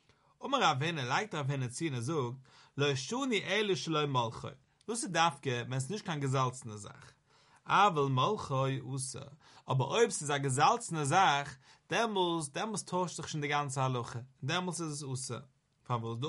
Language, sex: English, male